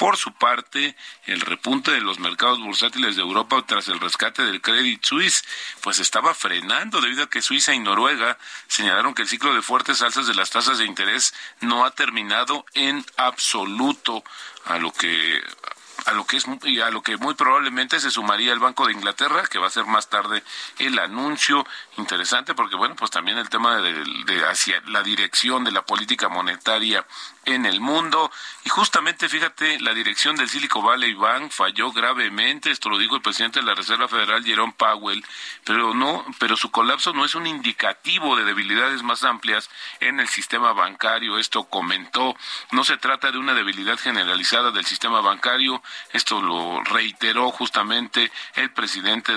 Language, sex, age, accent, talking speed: Spanish, male, 40-59, Mexican, 175 wpm